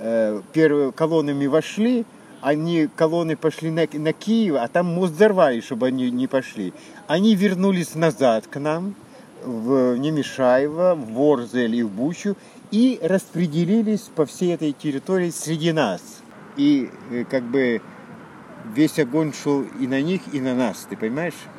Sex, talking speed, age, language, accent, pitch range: male, 140 wpm, 50-69, Russian, native, 135-180 Hz